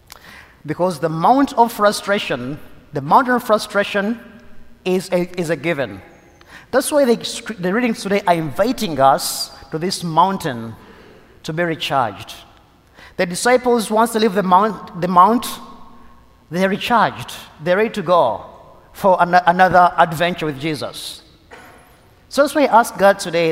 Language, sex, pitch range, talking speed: English, male, 135-185 Hz, 145 wpm